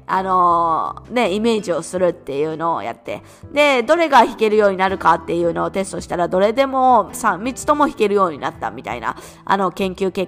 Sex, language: female, Japanese